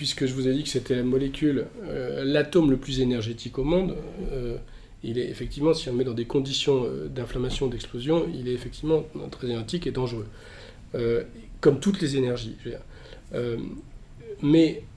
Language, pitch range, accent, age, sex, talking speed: French, 125-175 Hz, French, 40-59, male, 170 wpm